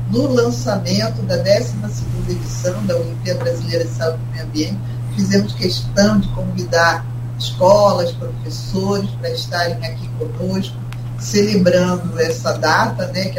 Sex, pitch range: female, 115-155 Hz